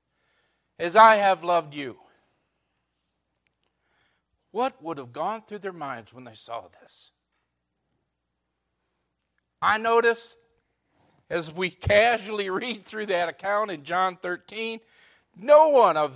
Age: 50-69